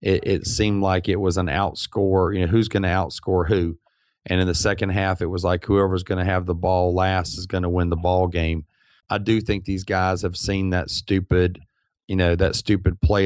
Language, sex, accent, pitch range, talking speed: English, male, American, 90-105 Hz, 230 wpm